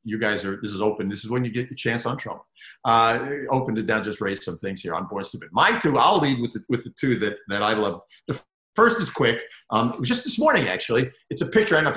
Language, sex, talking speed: English, male, 285 wpm